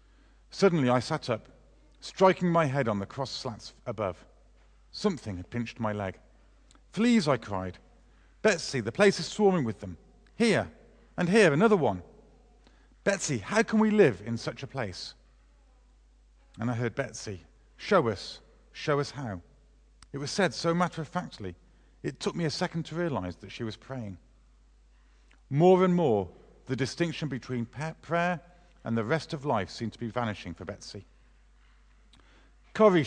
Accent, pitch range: British, 105-170 Hz